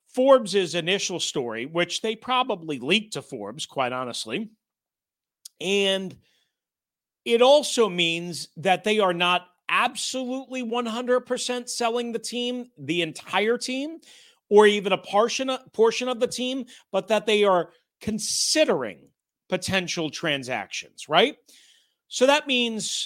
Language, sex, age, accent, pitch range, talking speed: English, male, 40-59, American, 170-245 Hz, 120 wpm